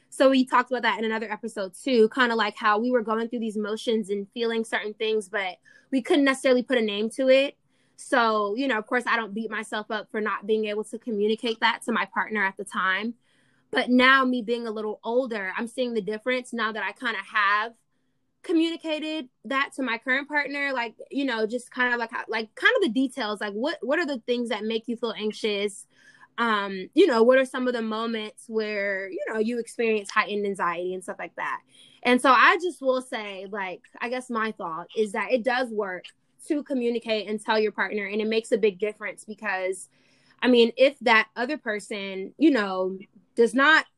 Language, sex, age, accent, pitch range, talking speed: English, female, 20-39, American, 215-250 Hz, 220 wpm